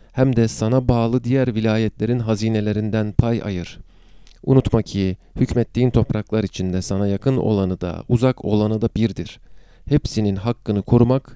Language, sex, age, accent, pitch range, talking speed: Turkish, male, 40-59, native, 100-125 Hz, 130 wpm